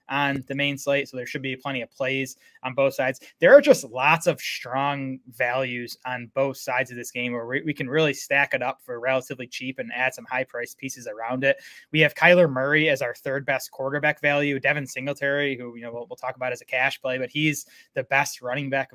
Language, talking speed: English, 230 wpm